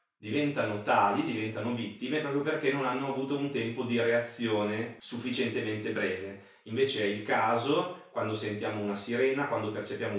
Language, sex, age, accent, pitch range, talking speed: Italian, male, 30-49, native, 100-125 Hz, 145 wpm